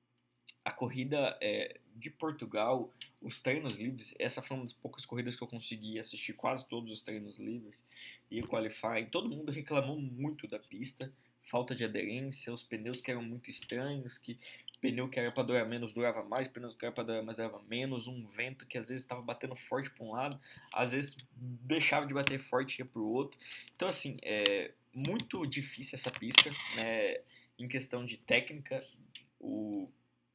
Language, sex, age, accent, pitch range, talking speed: Portuguese, male, 20-39, Brazilian, 110-135 Hz, 185 wpm